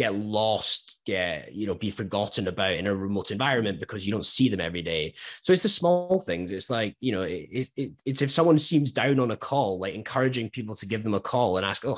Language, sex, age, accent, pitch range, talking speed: English, male, 20-39, British, 95-130 Hz, 250 wpm